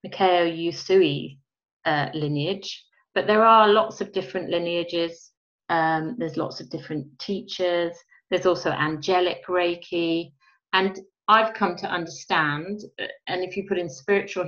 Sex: female